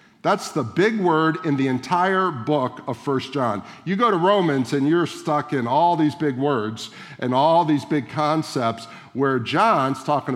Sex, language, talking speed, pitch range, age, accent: male, English, 180 wpm, 125-170 Hz, 50-69, American